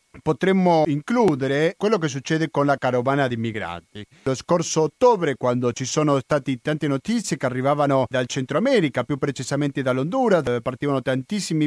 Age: 40-59